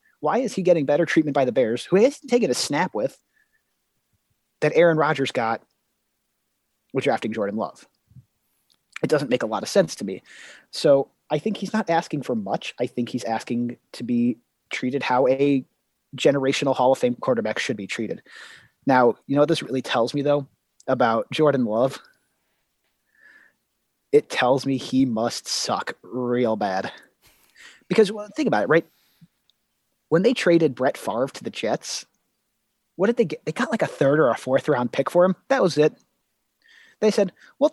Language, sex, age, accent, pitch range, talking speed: English, male, 30-49, American, 125-210 Hz, 185 wpm